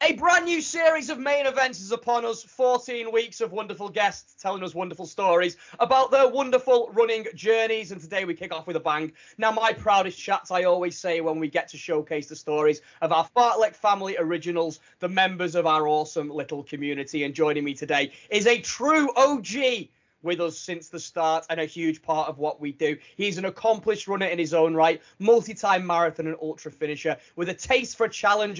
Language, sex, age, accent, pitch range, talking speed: English, male, 20-39, British, 155-225 Hz, 205 wpm